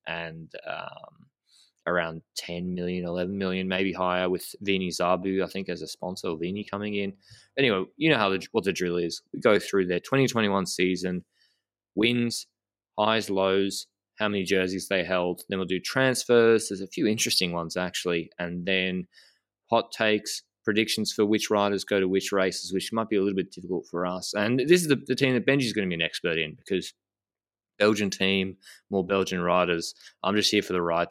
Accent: Australian